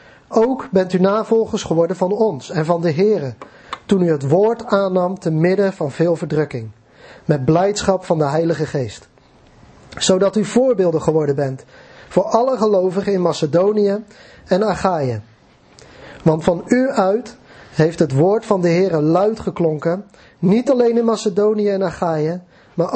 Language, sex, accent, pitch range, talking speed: Dutch, male, Dutch, 160-205 Hz, 150 wpm